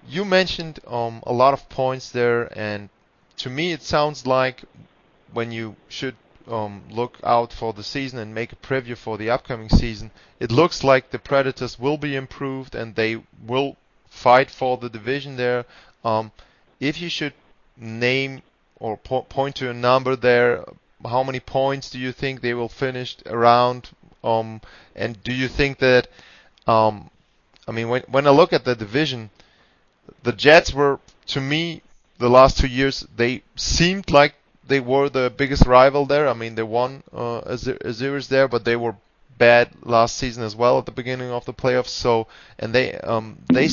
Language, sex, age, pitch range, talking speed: German, male, 30-49, 115-135 Hz, 175 wpm